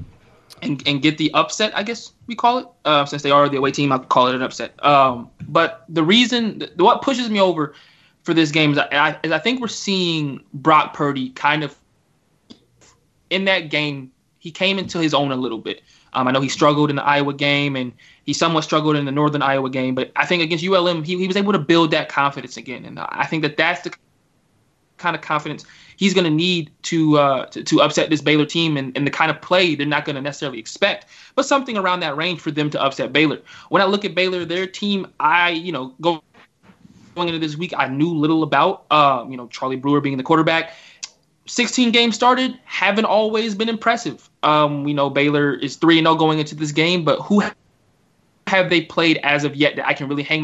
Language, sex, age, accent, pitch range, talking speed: English, male, 20-39, American, 145-180 Hz, 225 wpm